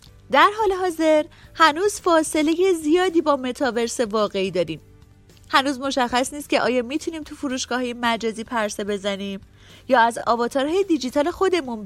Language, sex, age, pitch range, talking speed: Persian, female, 30-49, 225-310 Hz, 130 wpm